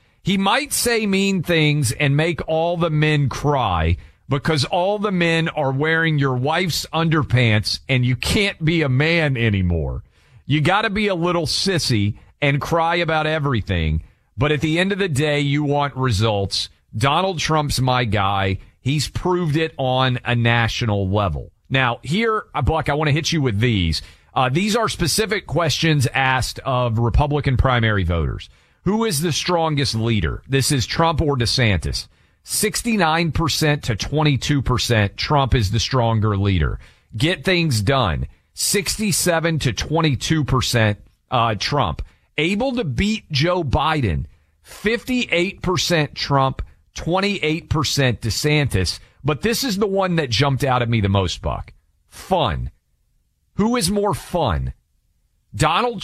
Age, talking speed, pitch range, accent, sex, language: 40-59, 140 wpm, 110-170 Hz, American, male, English